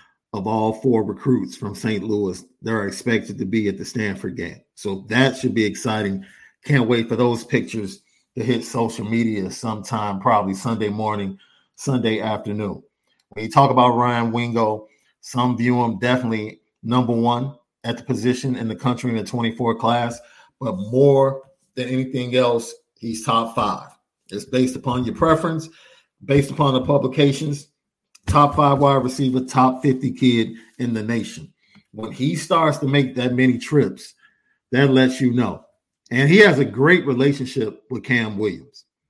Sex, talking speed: male, 160 wpm